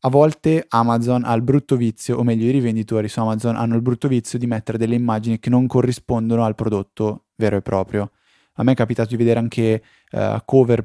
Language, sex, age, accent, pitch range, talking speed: Italian, male, 20-39, native, 105-125 Hz, 205 wpm